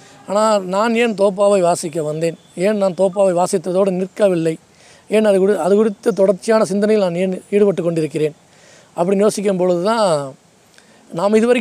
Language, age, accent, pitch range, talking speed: English, 20-39, Indian, 165-210 Hz, 115 wpm